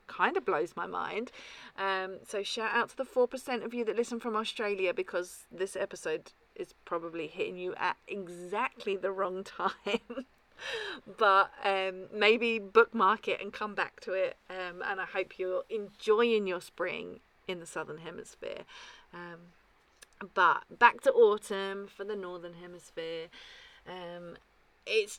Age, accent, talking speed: 40-59, British, 155 wpm